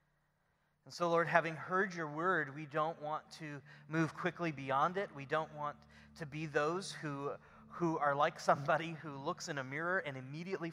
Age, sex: 30-49, male